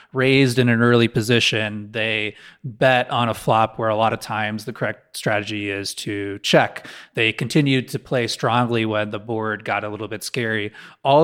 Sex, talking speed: male, 185 wpm